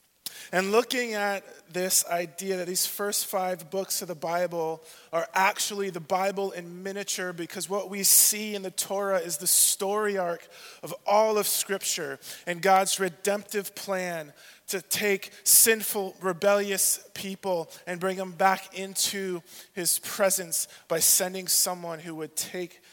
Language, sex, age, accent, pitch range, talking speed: English, male, 20-39, American, 165-200 Hz, 145 wpm